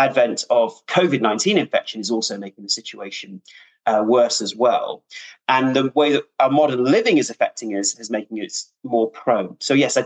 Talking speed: 185 wpm